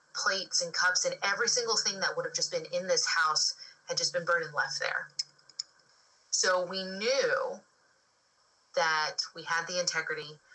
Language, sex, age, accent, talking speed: English, female, 30-49, American, 170 wpm